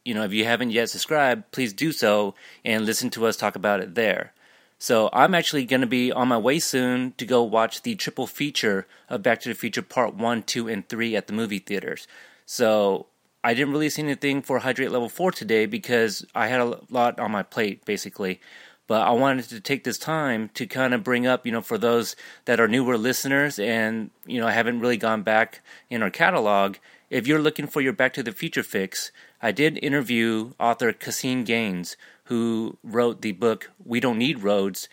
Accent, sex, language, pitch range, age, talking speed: American, male, English, 105-130 Hz, 30-49, 210 wpm